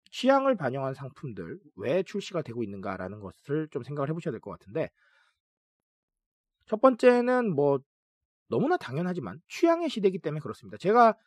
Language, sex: Korean, male